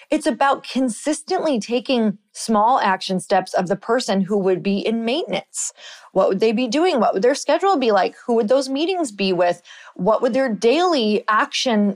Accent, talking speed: American, 185 wpm